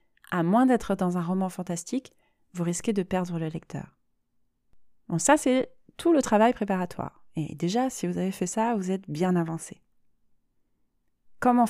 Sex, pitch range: female, 185-240 Hz